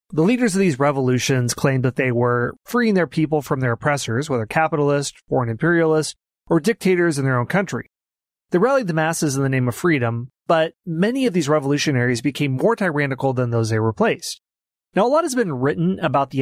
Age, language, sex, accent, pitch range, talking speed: 30-49, English, male, American, 130-170 Hz, 195 wpm